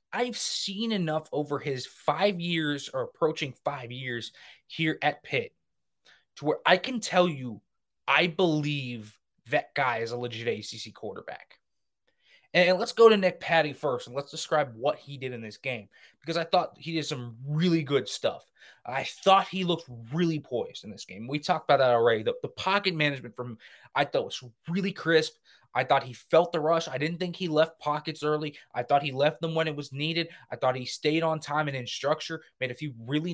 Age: 20-39